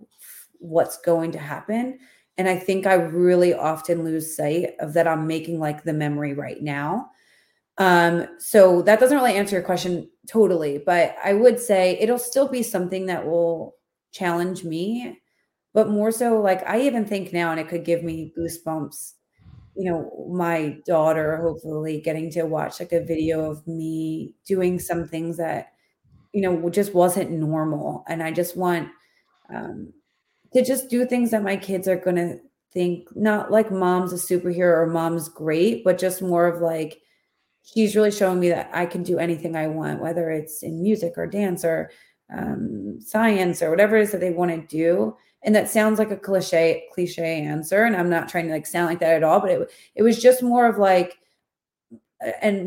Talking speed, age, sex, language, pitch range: 185 wpm, 30-49, female, English, 165-200 Hz